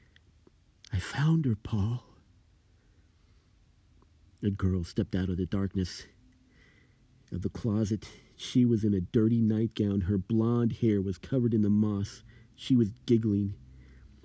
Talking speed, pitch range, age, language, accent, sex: 130 wpm, 100-115 Hz, 40-59, English, American, male